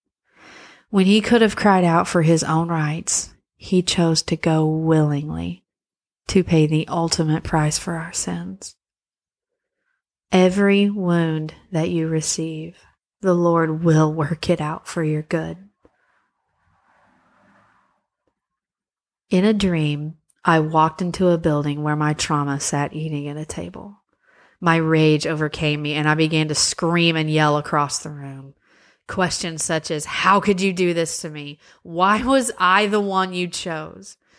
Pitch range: 155-195 Hz